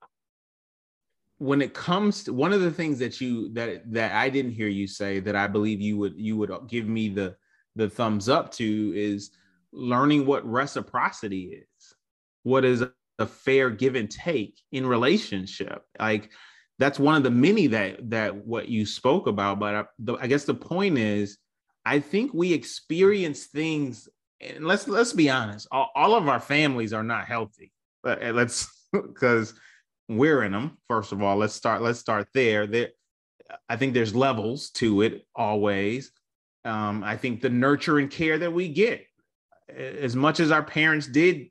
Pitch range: 110-135 Hz